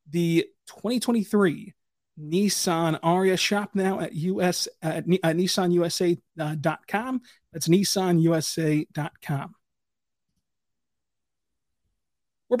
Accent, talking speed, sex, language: American, 65 wpm, male, English